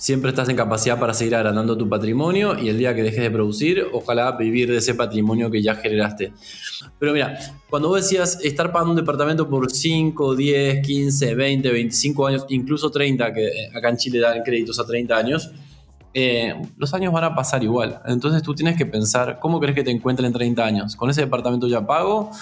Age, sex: 20-39, male